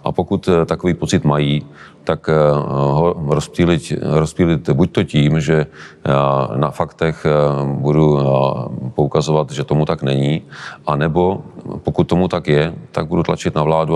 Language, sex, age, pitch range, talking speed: Czech, male, 40-59, 70-80 Hz, 140 wpm